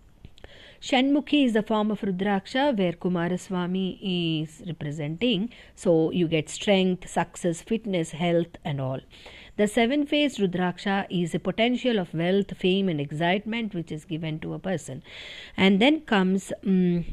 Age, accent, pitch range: 50-69, native, 160-205 Hz